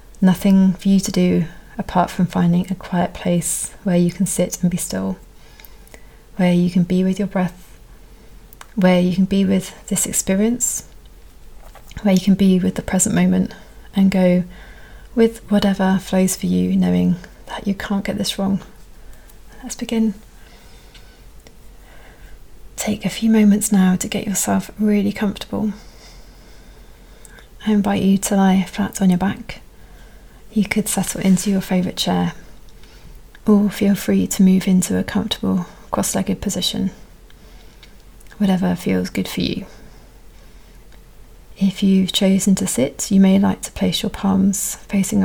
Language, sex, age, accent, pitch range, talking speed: English, female, 30-49, British, 180-205 Hz, 145 wpm